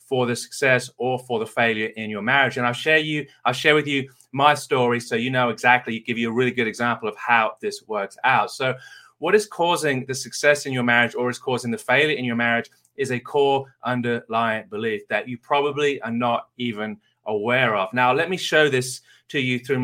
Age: 30-49